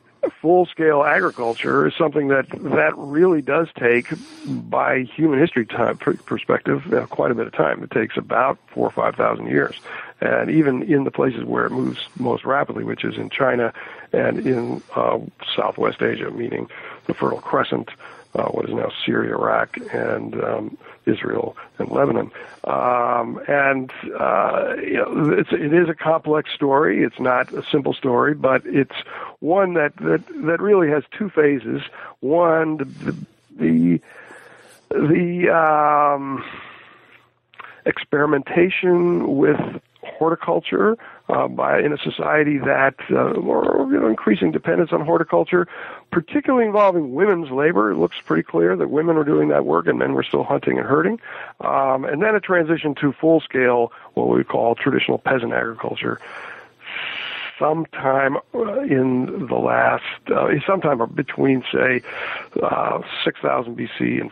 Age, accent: 60-79, American